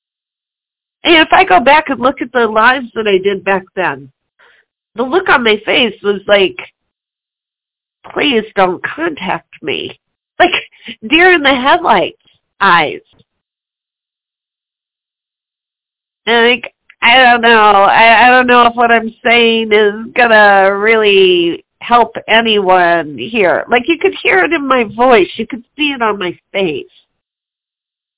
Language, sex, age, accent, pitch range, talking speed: English, female, 40-59, American, 205-280 Hz, 140 wpm